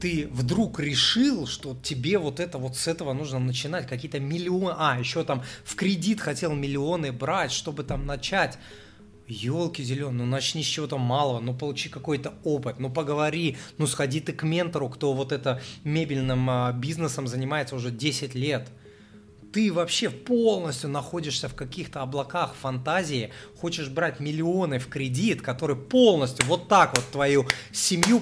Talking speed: 155 wpm